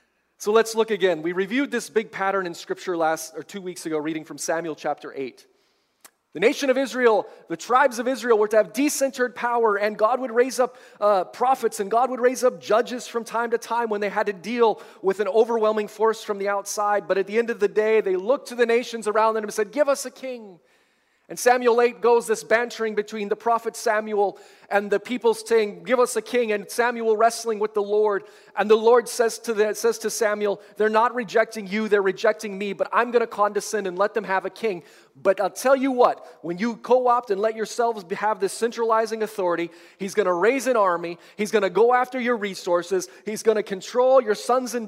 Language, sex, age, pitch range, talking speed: English, male, 30-49, 190-235 Hz, 225 wpm